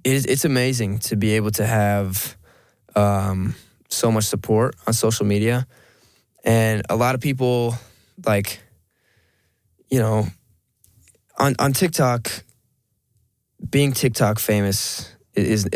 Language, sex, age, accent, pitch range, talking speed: Finnish, male, 10-29, American, 100-115 Hz, 115 wpm